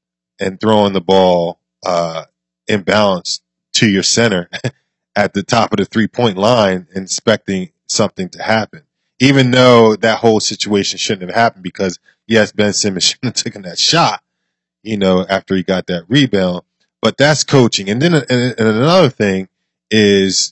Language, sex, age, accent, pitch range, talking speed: English, male, 20-39, American, 90-115 Hz, 160 wpm